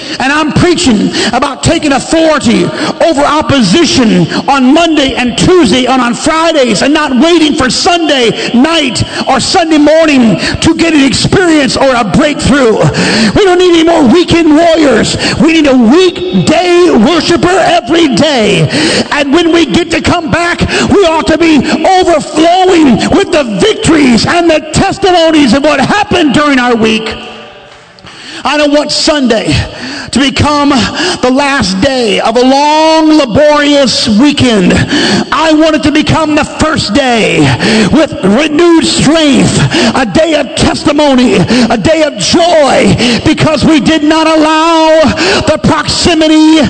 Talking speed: 140 wpm